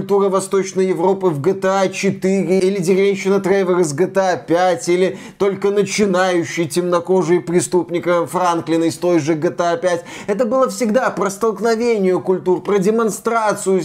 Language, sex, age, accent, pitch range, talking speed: Russian, male, 20-39, native, 175-225 Hz, 135 wpm